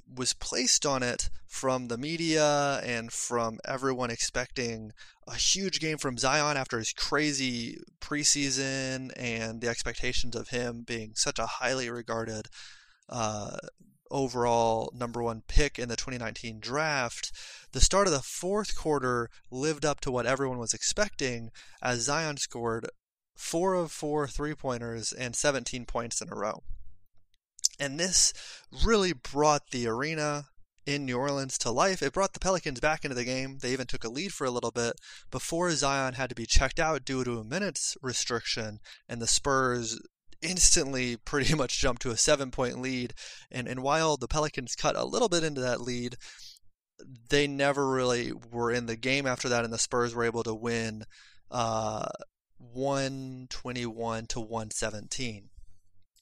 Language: English